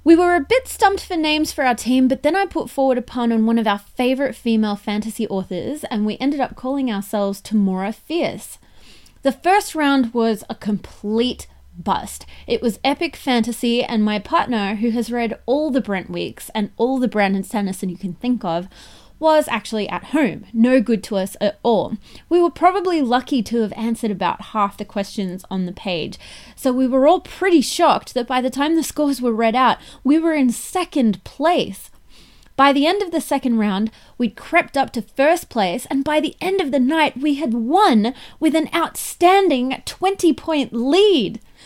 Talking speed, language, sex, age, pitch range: 195 wpm, English, female, 20-39, 220-300 Hz